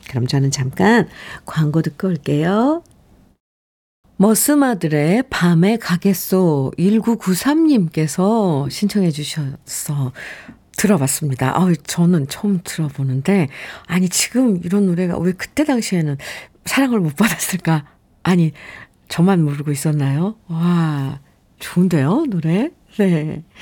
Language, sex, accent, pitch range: Korean, female, native, 155-210 Hz